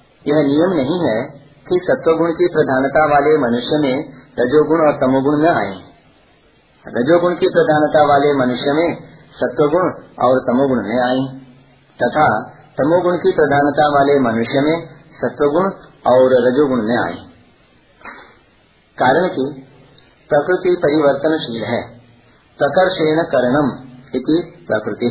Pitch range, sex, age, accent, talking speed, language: 130-160 Hz, male, 50-69, native, 110 wpm, Hindi